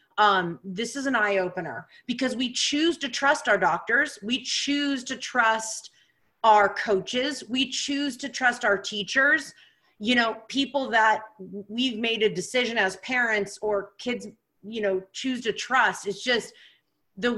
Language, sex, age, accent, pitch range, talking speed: English, female, 30-49, American, 210-260 Hz, 155 wpm